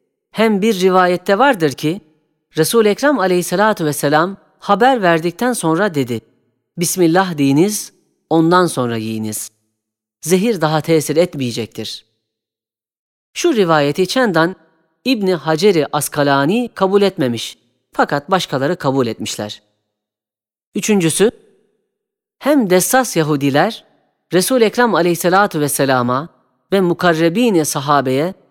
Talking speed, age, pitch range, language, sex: 95 wpm, 40-59, 145-200 Hz, Turkish, female